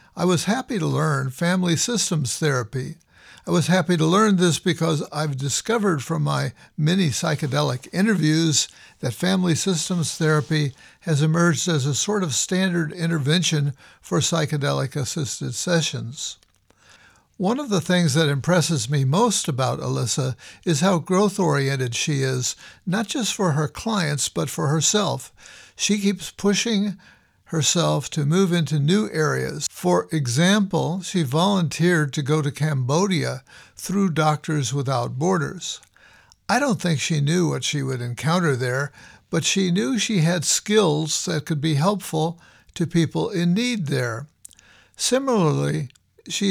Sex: male